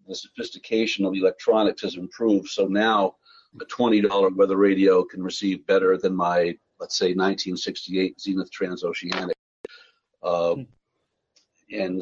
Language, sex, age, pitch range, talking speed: English, male, 50-69, 100-130 Hz, 120 wpm